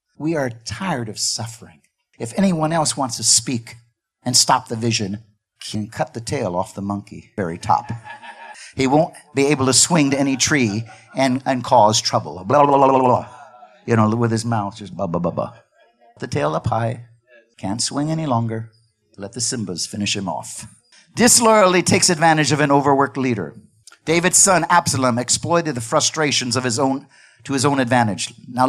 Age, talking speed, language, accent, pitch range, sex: 50-69, 185 wpm, English, American, 115-155 Hz, male